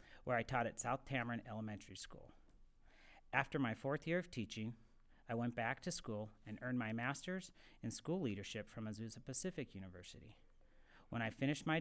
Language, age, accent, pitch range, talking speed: English, 40-59, American, 110-160 Hz, 175 wpm